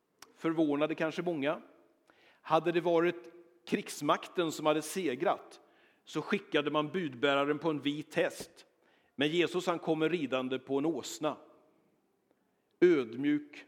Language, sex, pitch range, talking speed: Swedish, male, 140-180 Hz, 120 wpm